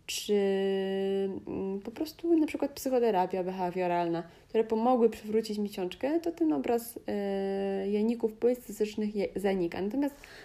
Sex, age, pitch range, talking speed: female, 20-39, 195-235 Hz, 105 wpm